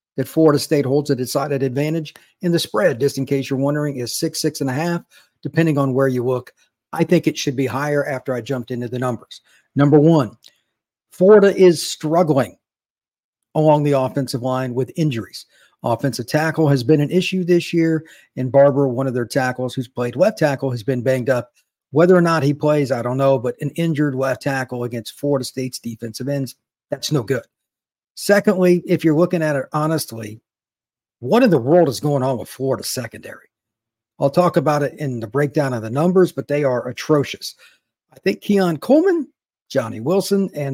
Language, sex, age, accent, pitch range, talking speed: English, male, 50-69, American, 130-165 Hz, 190 wpm